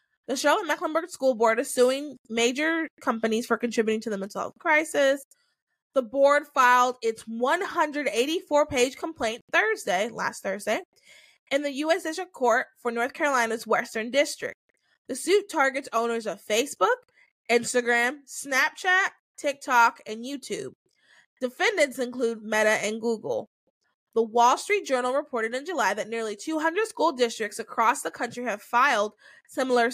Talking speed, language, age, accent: 140 wpm, English, 20-39, American